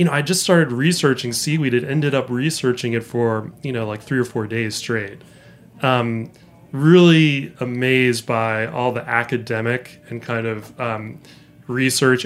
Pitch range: 115-130 Hz